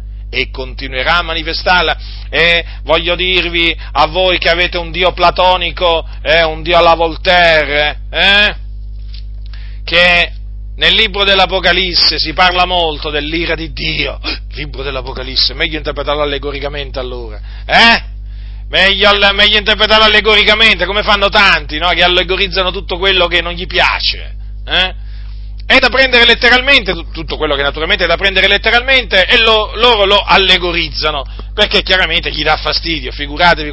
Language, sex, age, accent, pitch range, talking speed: Italian, male, 40-59, native, 145-195 Hz, 140 wpm